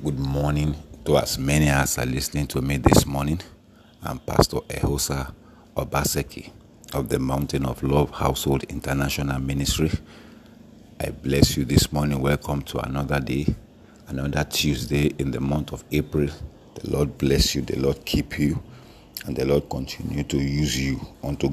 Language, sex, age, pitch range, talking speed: English, male, 50-69, 70-80 Hz, 155 wpm